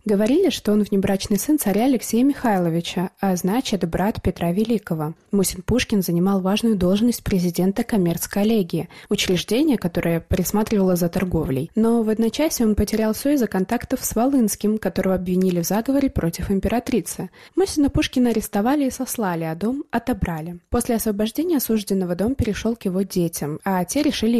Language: Russian